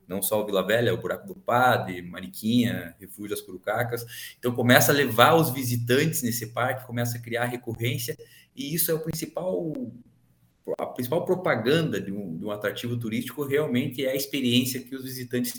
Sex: male